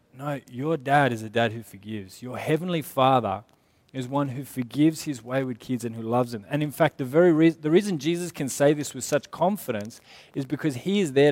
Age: 20-39